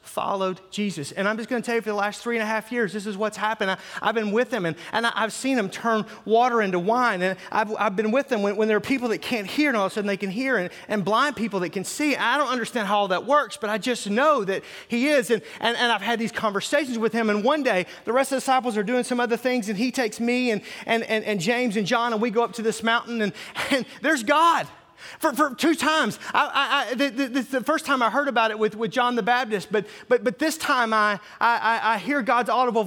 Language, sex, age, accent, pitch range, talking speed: English, male, 30-49, American, 215-265 Hz, 285 wpm